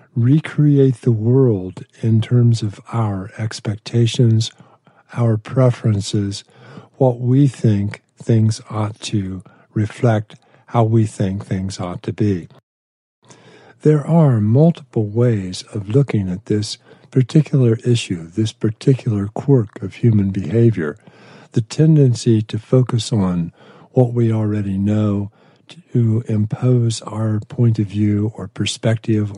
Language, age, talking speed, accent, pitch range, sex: English, 50-69, 115 wpm, American, 105-130 Hz, male